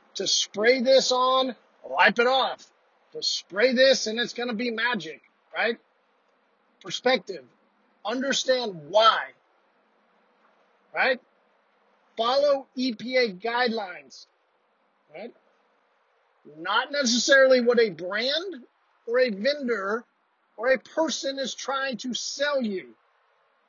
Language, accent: English, American